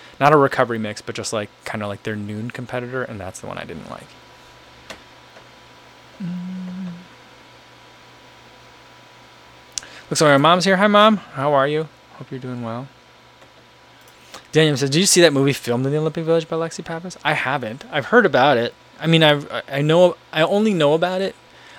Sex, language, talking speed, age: male, English, 180 wpm, 20-39